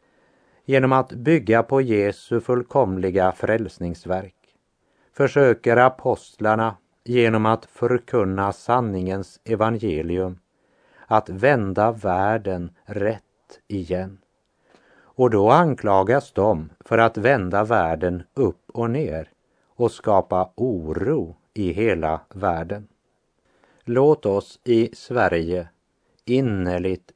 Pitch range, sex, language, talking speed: 90-120 Hz, male, Swedish, 90 wpm